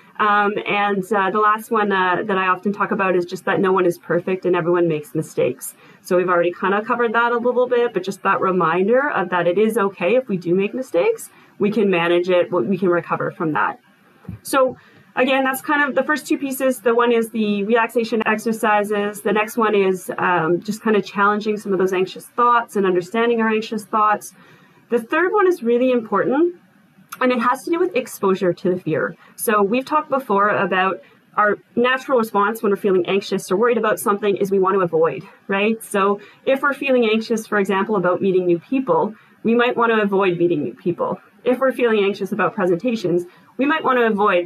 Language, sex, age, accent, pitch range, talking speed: English, female, 30-49, American, 190-235 Hz, 215 wpm